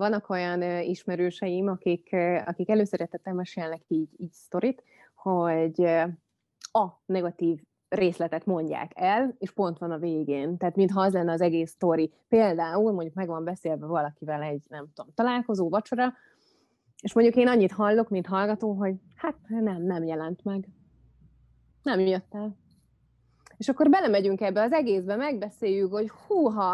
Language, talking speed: Hungarian, 150 wpm